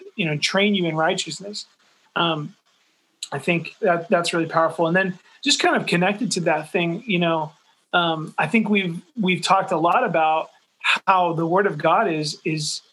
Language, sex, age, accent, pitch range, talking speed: English, male, 30-49, American, 170-210 Hz, 185 wpm